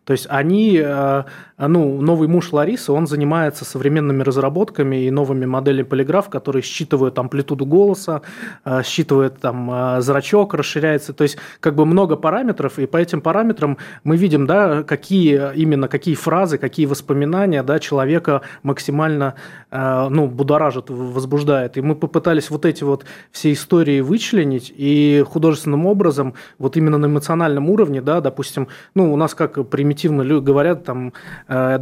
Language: Russian